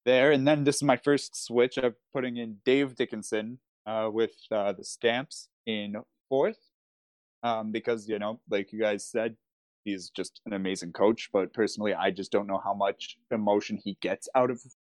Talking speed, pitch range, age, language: 185 wpm, 100-130 Hz, 20-39, English